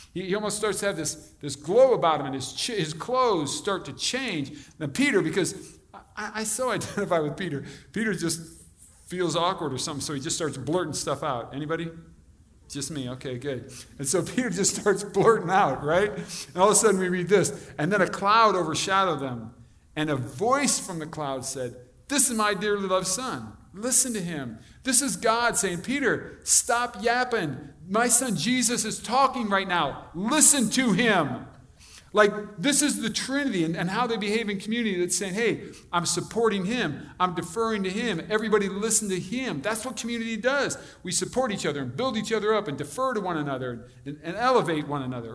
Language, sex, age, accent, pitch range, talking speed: English, male, 50-69, American, 145-220 Hz, 195 wpm